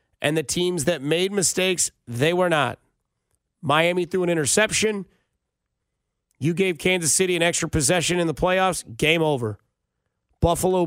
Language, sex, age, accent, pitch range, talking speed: English, male, 30-49, American, 150-185 Hz, 145 wpm